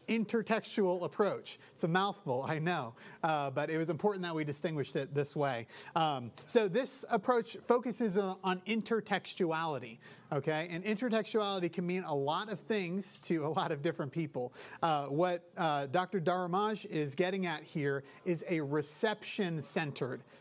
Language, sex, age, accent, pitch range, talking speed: English, male, 30-49, American, 150-200 Hz, 150 wpm